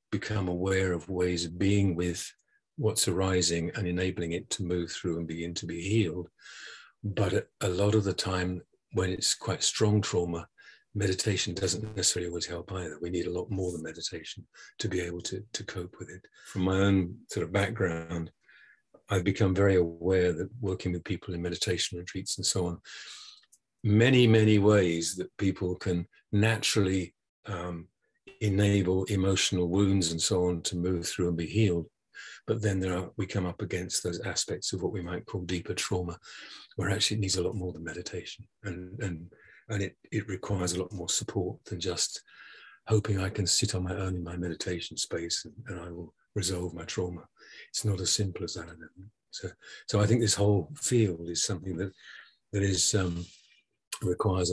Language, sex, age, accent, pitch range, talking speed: English, male, 50-69, British, 90-105 Hz, 185 wpm